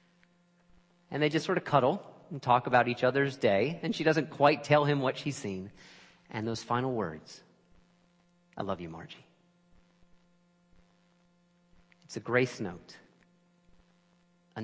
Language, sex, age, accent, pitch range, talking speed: English, male, 40-59, American, 125-175 Hz, 140 wpm